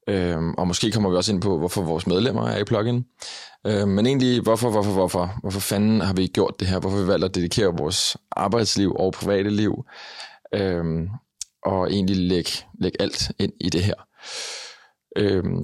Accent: native